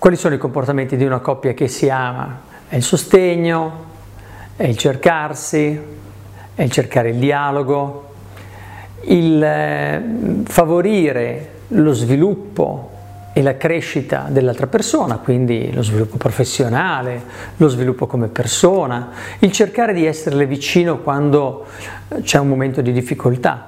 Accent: native